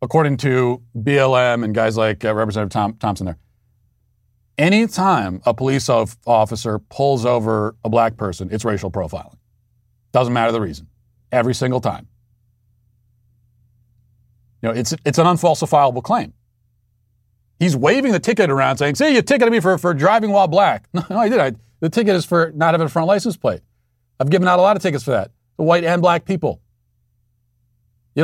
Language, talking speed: English, 170 wpm